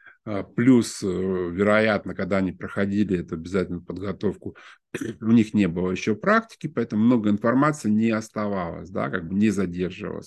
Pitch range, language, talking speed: 100-155 Hz, Russian, 140 wpm